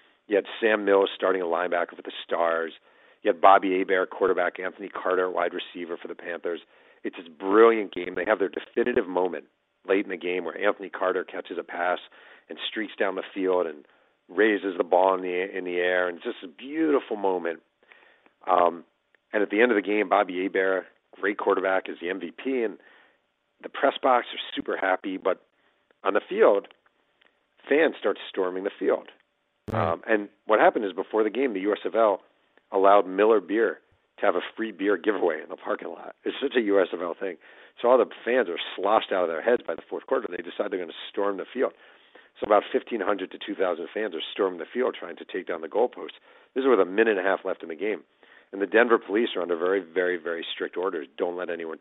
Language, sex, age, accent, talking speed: English, male, 40-59, American, 210 wpm